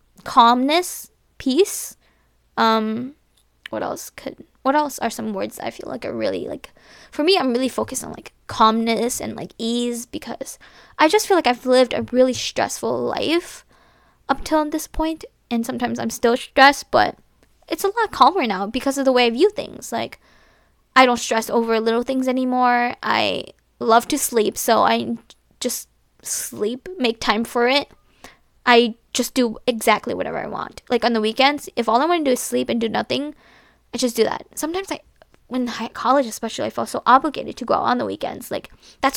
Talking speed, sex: 190 wpm, female